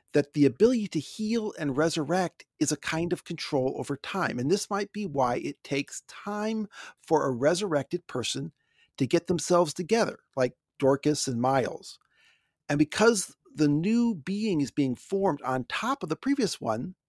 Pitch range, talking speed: 135-195 Hz, 170 wpm